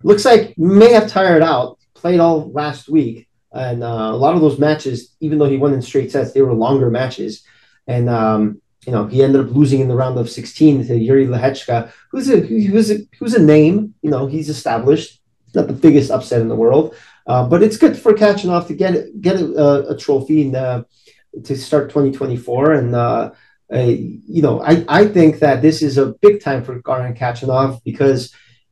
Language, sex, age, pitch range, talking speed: English, male, 30-49, 125-165 Hz, 205 wpm